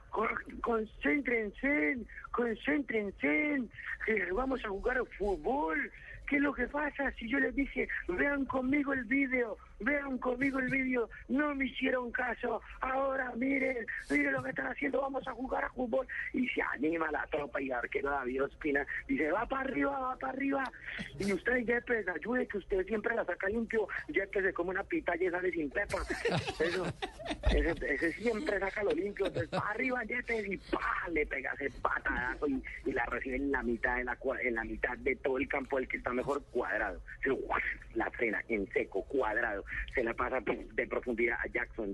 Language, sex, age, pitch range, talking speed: Spanish, male, 50-69, 160-260 Hz, 185 wpm